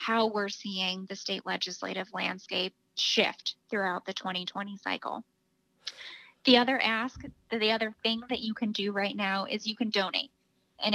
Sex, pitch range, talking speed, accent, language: female, 190-225 Hz, 160 wpm, American, English